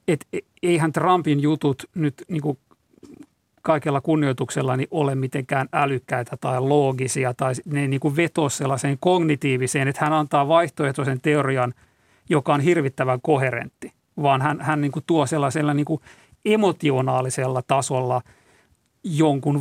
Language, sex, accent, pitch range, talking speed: Finnish, male, native, 130-150 Hz, 120 wpm